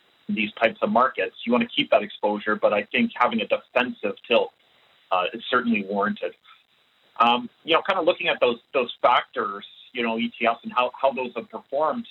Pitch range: 110-140 Hz